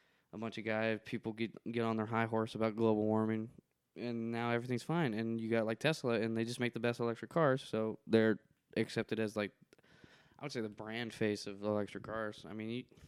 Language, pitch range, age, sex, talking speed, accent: English, 110-135 Hz, 10-29, male, 220 wpm, American